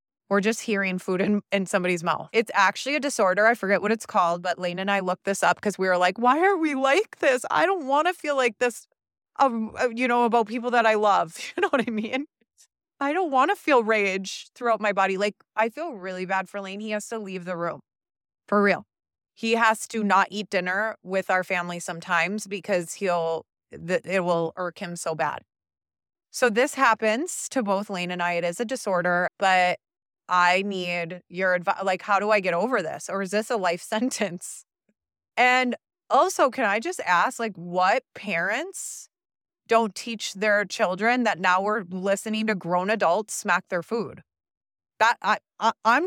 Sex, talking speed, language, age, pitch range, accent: female, 200 wpm, English, 30-49, 185-240 Hz, American